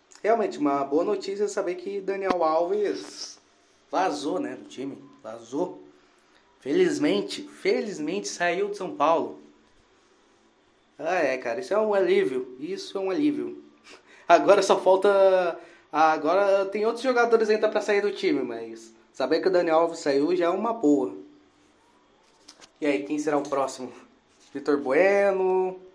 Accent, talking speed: Brazilian, 145 wpm